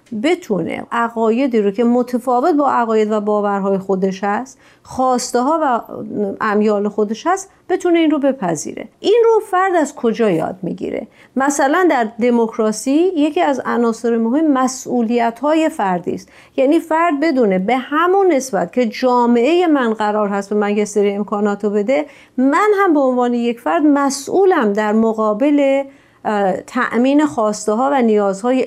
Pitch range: 210-285 Hz